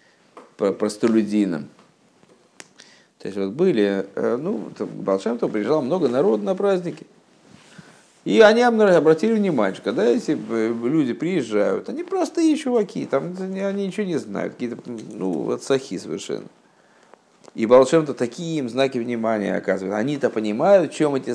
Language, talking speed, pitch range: Russian, 130 wpm, 105-165 Hz